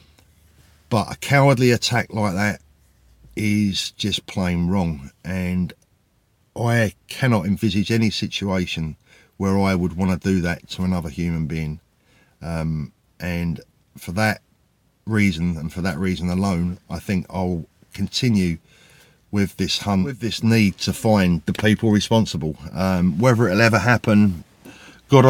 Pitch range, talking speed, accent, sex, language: 85-105 Hz, 140 wpm, British, male, English